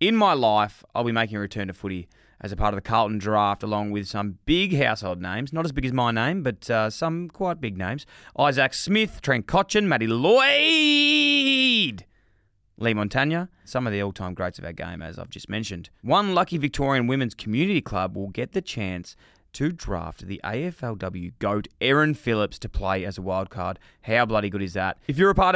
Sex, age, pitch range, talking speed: male, 20-39, 100-145 Hz, 205 wpm